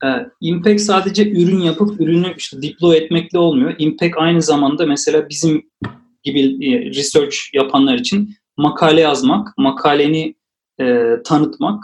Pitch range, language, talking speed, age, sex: 160-210 Hz, Turkish, 115 wpm, 40-59, male